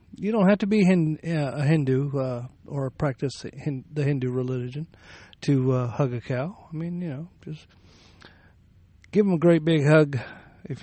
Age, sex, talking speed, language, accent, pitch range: 40-59, male, 165 wpm, English, American, 105-155 Hz